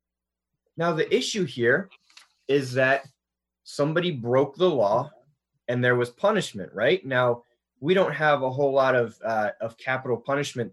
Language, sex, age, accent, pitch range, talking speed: English, male, 30-49, American, 120-170 Hz, 150 wpm